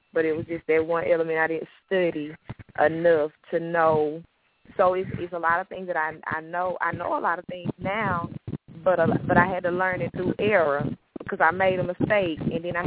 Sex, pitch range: female, 165-195 Hz